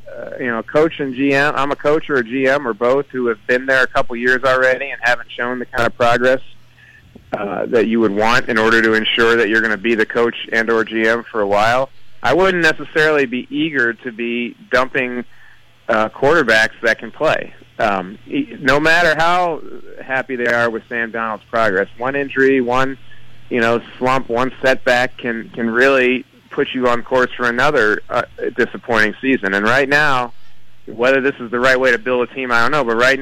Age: 30-49